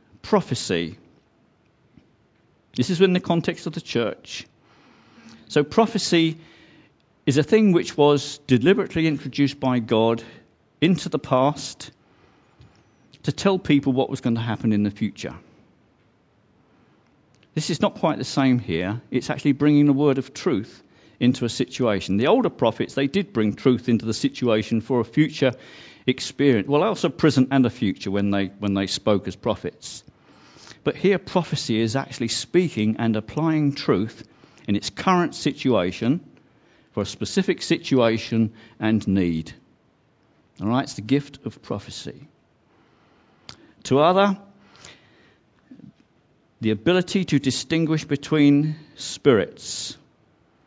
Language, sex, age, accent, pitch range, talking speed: English, male, 50-69, British, 115-155 Hz, 130 wpm